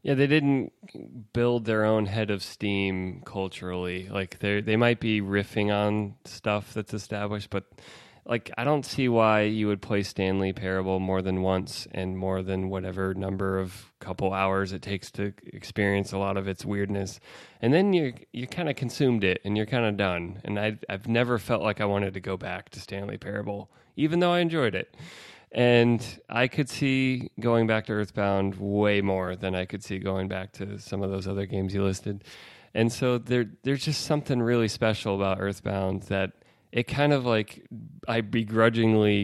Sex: male